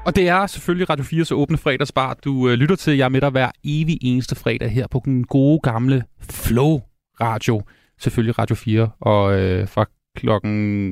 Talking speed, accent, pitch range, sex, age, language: 185 wpm, native, 125-160 Hz, male, 30-49, Danish